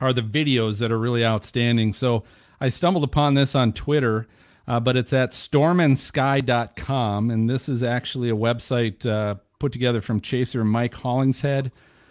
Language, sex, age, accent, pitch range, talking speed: English, male, 40-59, American, 115-140 Hz, 160 wpm